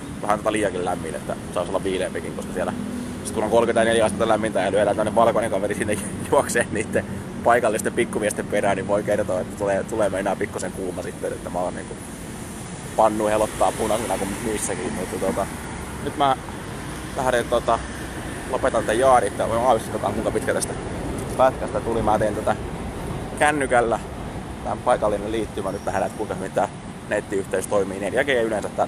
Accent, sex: native, male